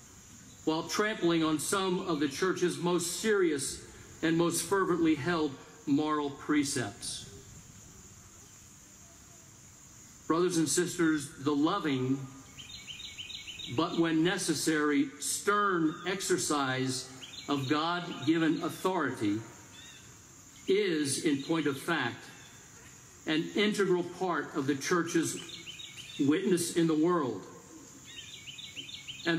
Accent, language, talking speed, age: American, English, 90 wpm, 50-69